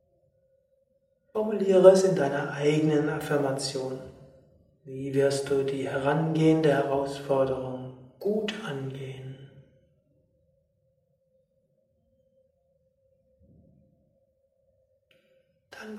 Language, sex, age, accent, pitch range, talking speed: German, male, 60-79, German, 140-185 Hz, 55 wpm